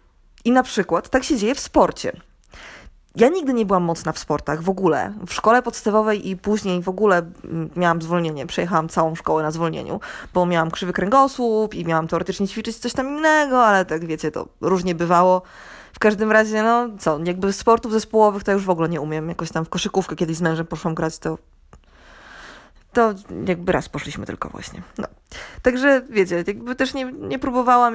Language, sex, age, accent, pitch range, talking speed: Polish, female, 20-39, native, 175-235 Hz, 185 wpm